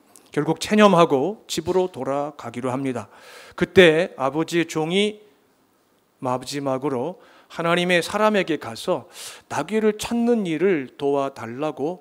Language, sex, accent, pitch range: Korean, male, native, 125-175 Hz